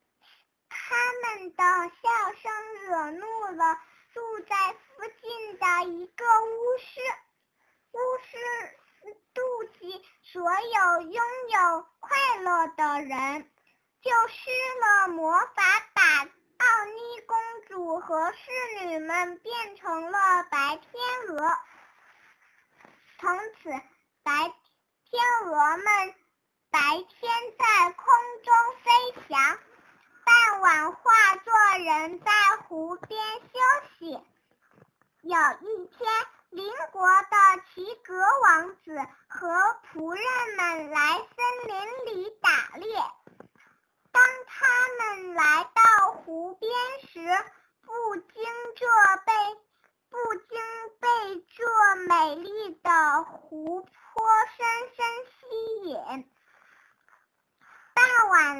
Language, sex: Chinese, male